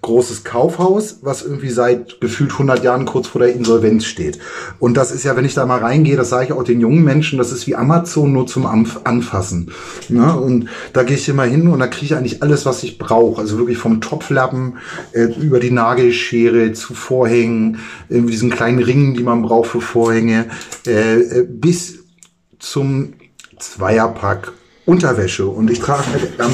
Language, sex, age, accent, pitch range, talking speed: German, male, 30-49, German, 115-150 Hz, 180 wpm